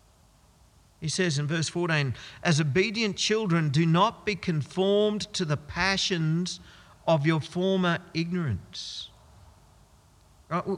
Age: 50-69